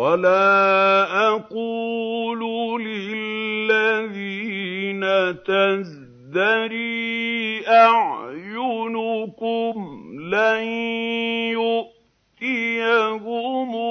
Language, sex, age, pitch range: Arabic, male, 50-69, 195-230 Hz